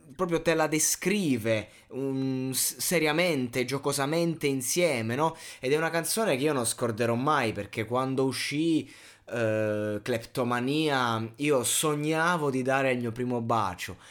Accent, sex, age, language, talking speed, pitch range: native, male, 20-39, Italian, 130 wpm, 110-140 Hz